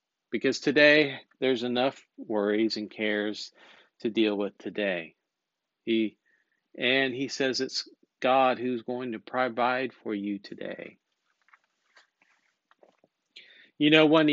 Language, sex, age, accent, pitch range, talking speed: English, male, 40-59, American, 115-145 Hz, 115 wpm